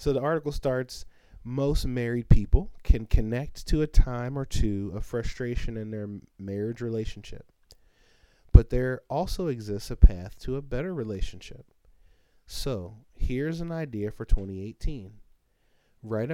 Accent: American